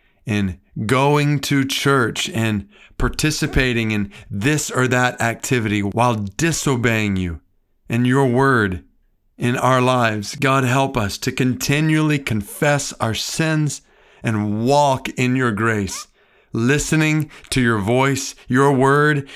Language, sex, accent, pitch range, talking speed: English, male, American, 105-135 Hz, 120 wpm